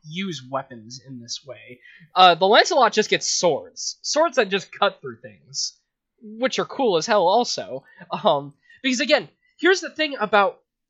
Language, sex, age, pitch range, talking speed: English, male, 20-39, 145-215 Hz, 165 wpm